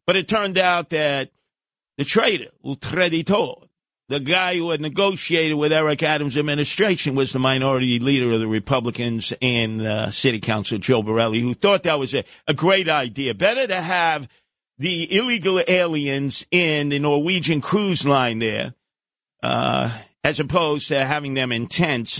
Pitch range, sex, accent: 130-200 Hz, male, American